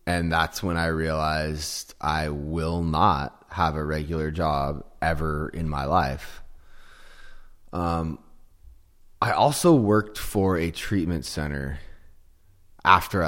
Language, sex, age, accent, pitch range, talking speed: English, male, 20-39, American, 75-90 Hz, 115 wpm